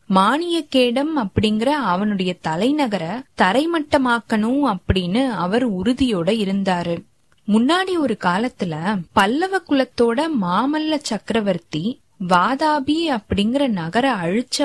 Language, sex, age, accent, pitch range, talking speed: Tamil, female, 20-39, native, 195-275 Hz, 80 wpm